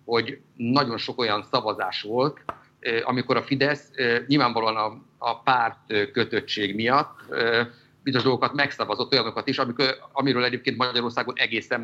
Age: 50-69